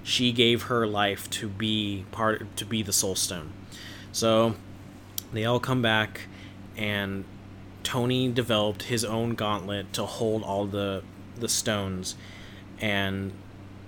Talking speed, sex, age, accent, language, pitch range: 130 wpm, male, 20-39, American, English, 100-115 Hz